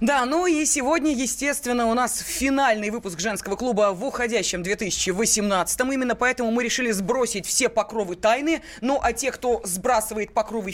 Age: 20-39